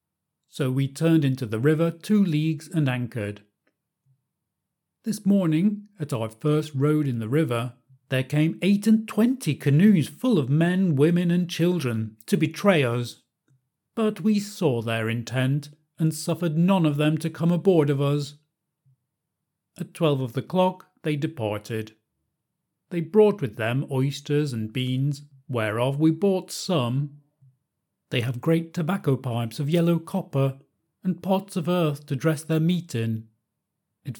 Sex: male